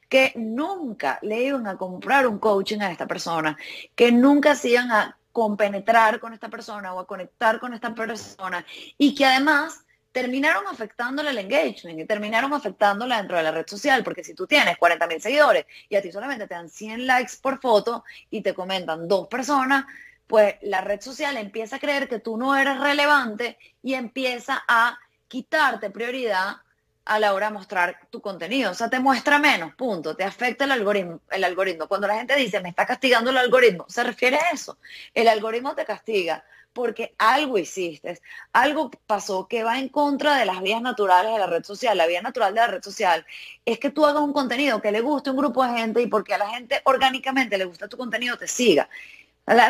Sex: female